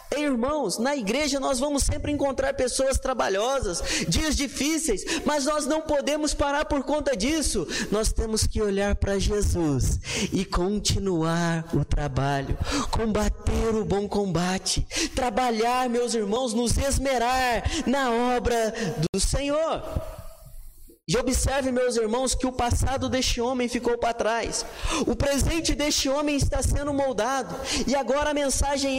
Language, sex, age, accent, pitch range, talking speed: Portuguese, male, 20-39, Brazilian, 220-295 Hz, 135 wpm